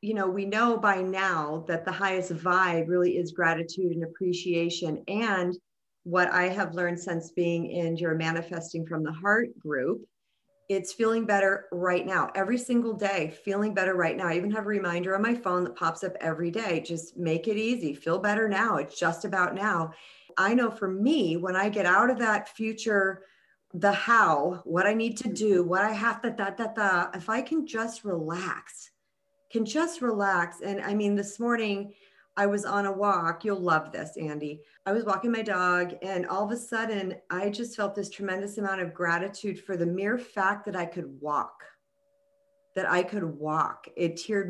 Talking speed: 195 wpm